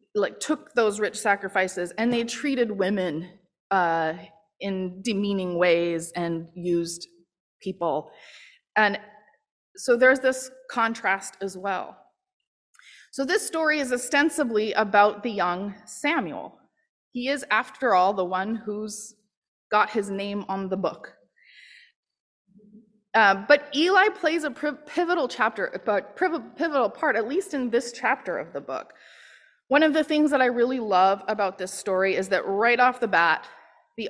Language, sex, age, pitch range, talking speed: English, female, 20-39, 190-285 Hz, 140 wpm